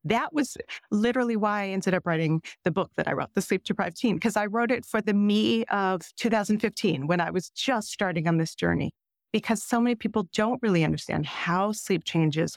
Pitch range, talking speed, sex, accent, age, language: 170-220 Hz, 205 wpm, female, American, 40-59, English